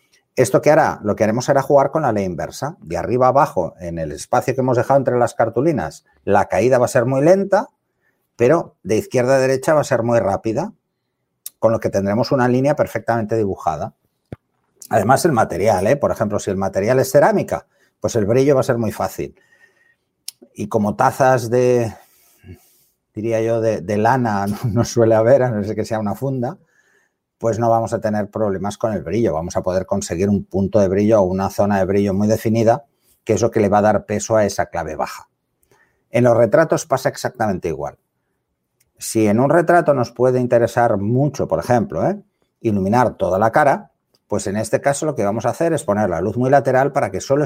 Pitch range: 105-135 Hz